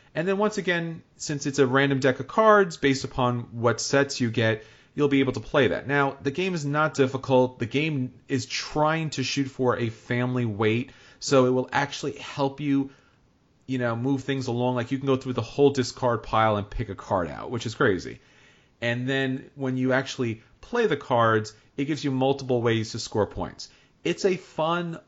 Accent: American